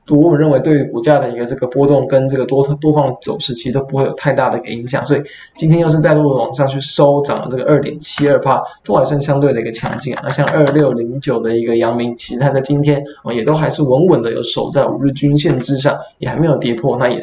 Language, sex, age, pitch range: Chinese, male, 20-39, 130-150 Hz